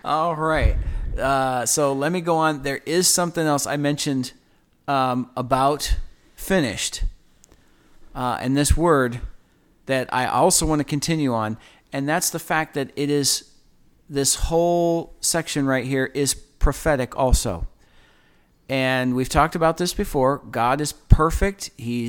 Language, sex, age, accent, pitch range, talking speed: English, male, 40-59, American, 130-160 Hz, 145 wpm